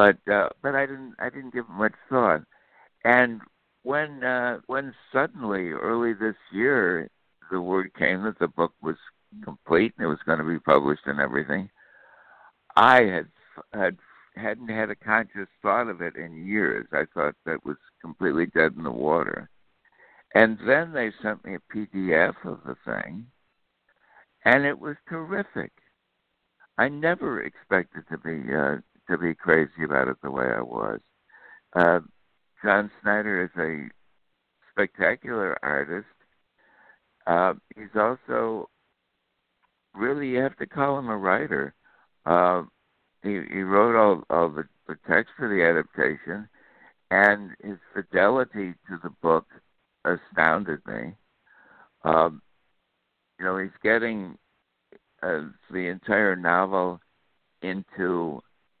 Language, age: English, 60-79